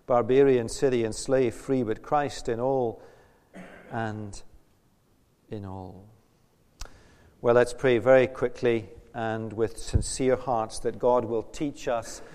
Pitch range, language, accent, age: 115-165 Hz, English, British, 40-59